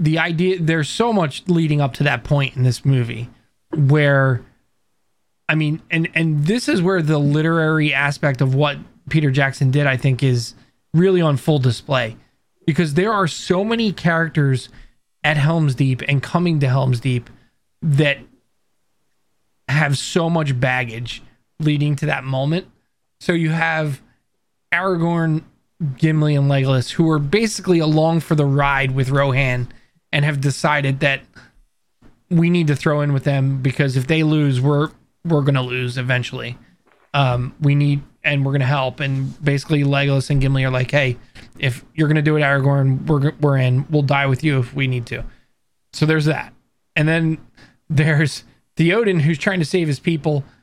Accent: American